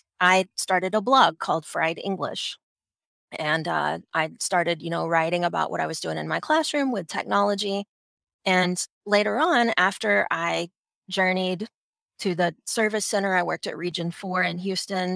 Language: English